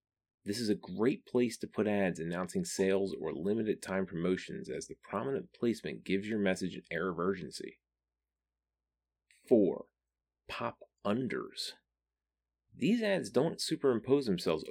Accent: American